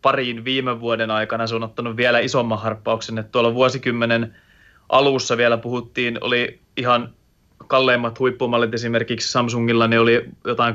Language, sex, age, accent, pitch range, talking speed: Finnish, male, 30-49, native, 110-125 Hz, 140 wpm